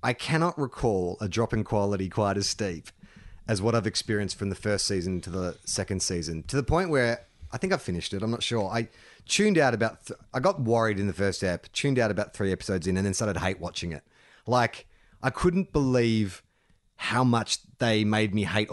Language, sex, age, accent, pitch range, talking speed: English, male, 30-49, Australian, 100-155 Hz, 220 wpm